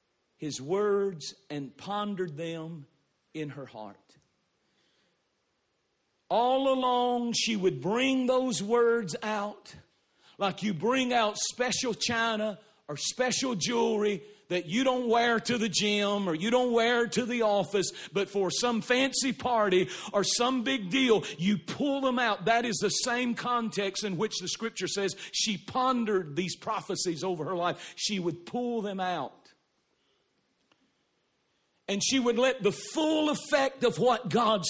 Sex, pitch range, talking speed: male, 175-230 Hz, 145 wpm